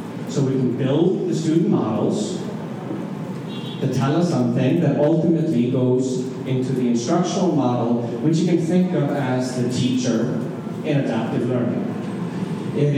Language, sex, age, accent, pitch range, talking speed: English, male, 30-49, American, 135-185 Hz, 140 wpm